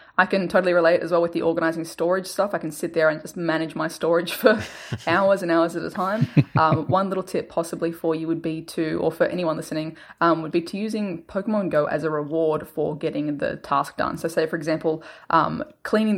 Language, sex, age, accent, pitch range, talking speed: English, female, 20-39, Australian, 160-190 Hz, 230 wpm